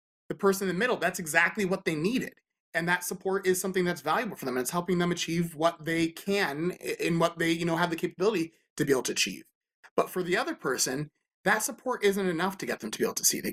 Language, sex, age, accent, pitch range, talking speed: English, male, 30-49, American, 165-195 Hz, 255 wpm